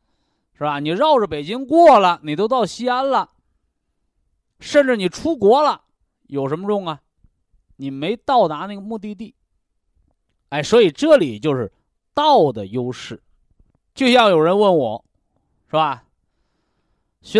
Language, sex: Chinese, male